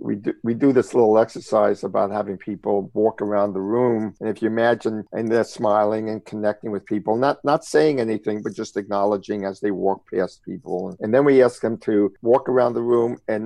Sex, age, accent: male, 50-69, American